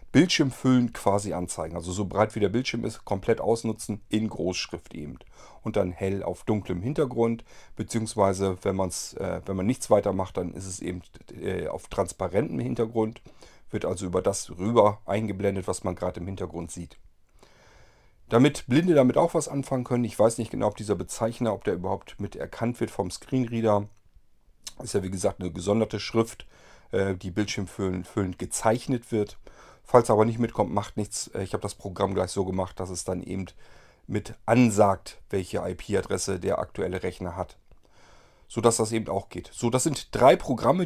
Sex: male